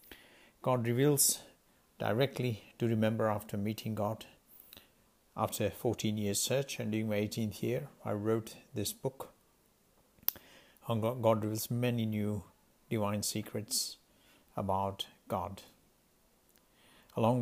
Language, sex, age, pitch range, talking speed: English, male, 60-79, 105-115 Hz, 105 wpm